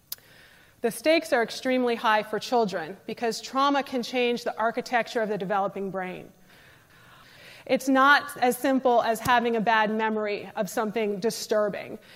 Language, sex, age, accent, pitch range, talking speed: English, female, 30-49, American, 215-265 Hz, 145 wpm